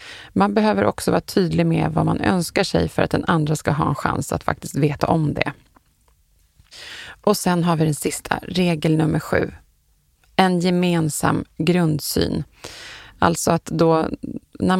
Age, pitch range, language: 30-49, 145-180 Hz, Swedish